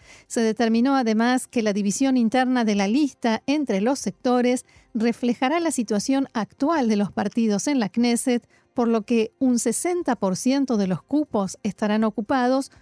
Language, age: Spanish, 40-59